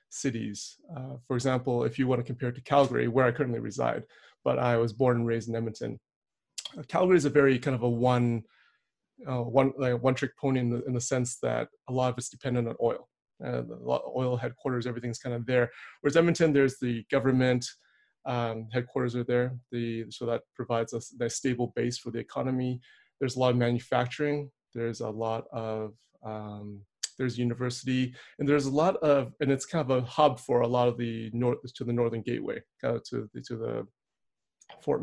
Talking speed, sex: 205 wpm, male